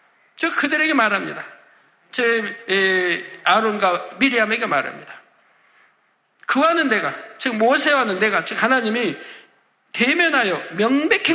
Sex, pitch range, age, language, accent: male, 215-275 Hz, 60-79, Korean, native